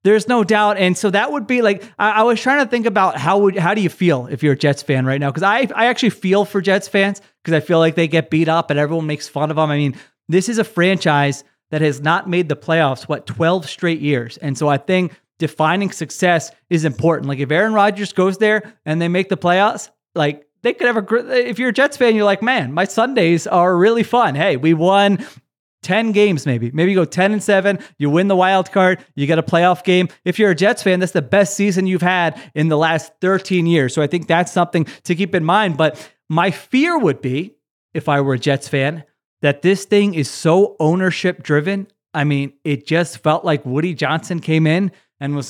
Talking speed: 240 wpm